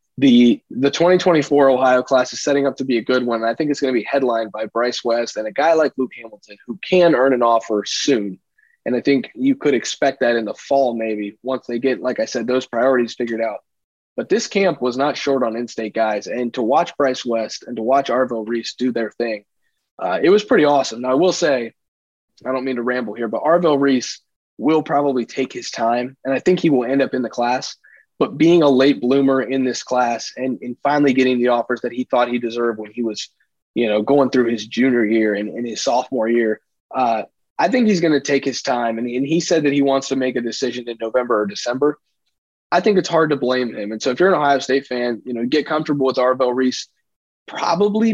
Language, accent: English, American